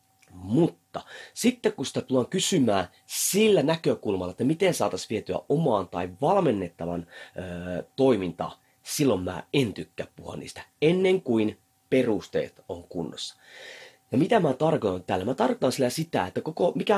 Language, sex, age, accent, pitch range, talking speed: Finnish, male, 30-49, native, 120-195 Hz, 140 wpm